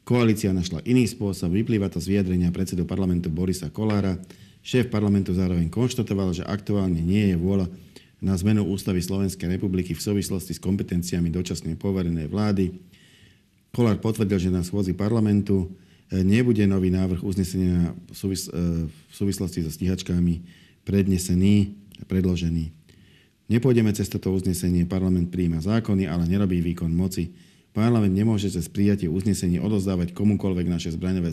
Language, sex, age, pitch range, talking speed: Slovak, male, 50-69, 90-105 Hz, 140 wpm